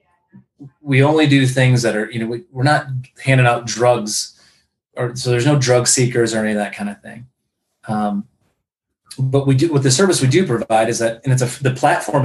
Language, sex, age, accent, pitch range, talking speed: English, male, 30-49, American, 115-135 Hz, 215 wpm